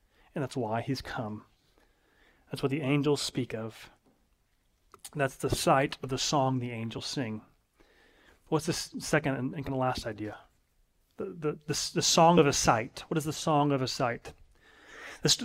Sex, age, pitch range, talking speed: male, 30-49, 130-165 Hz, 175 wpm